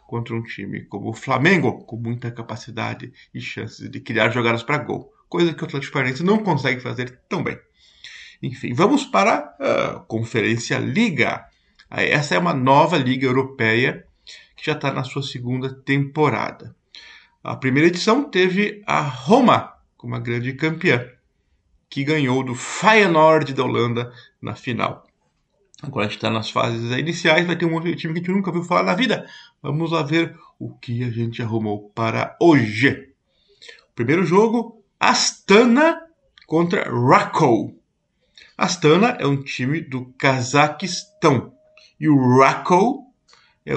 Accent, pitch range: Brazilian, 125-170 Hz